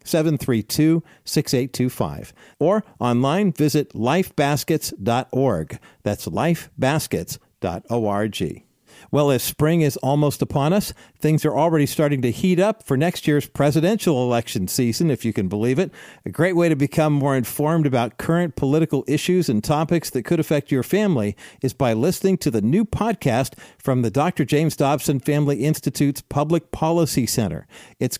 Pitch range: 125-160 Hz